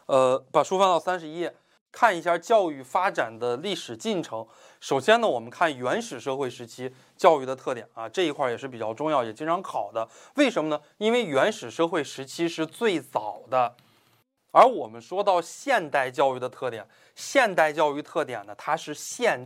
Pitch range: 130-195 Hz